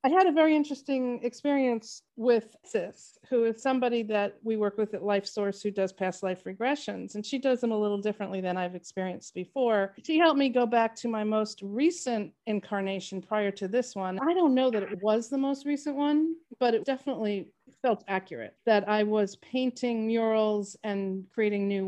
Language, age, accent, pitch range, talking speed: English, 40-59, American, 190-240 Hz, 195 wpm